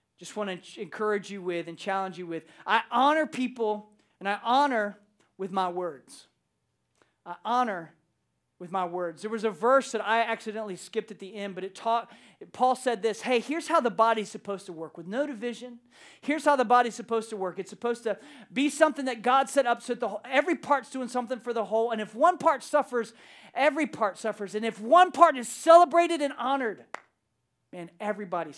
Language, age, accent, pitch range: English, 40-59, American, 210-290 Hz